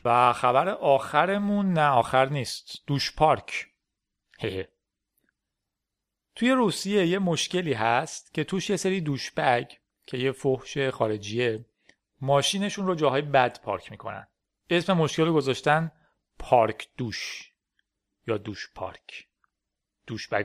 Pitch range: 120-165 Hz